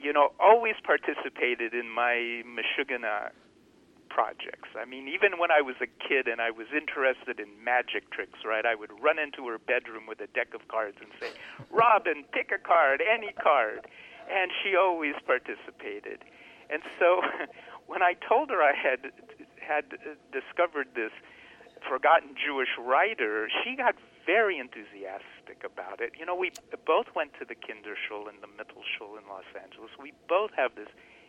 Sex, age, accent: male, 50-69, American